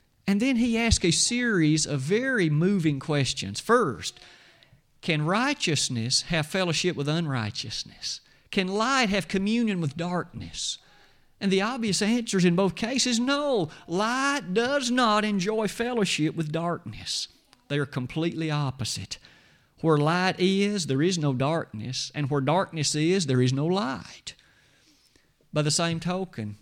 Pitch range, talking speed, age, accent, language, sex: 145-190 Hz, 140 wpm, 40-59, American, English, male